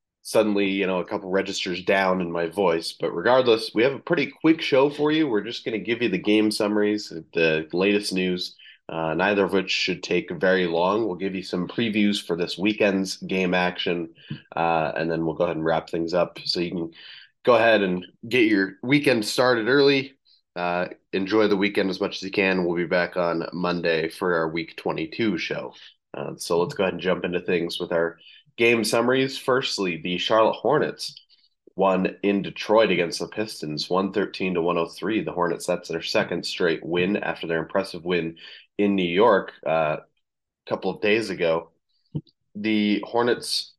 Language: English